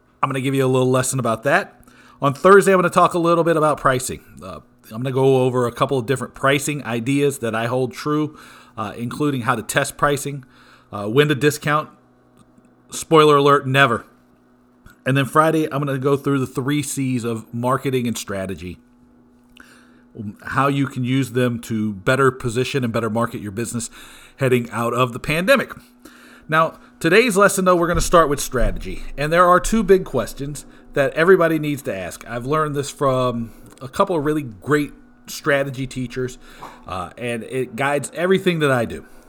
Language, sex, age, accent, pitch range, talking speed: English, male, 40-59, American, 120-150 Hz, 185 wpm